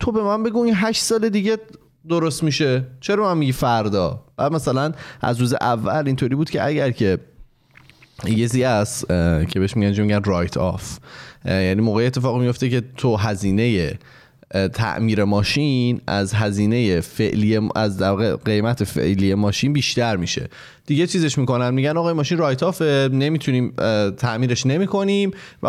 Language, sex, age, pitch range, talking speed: Persian, male, 20-39, 105-140 Hz, 145 wpm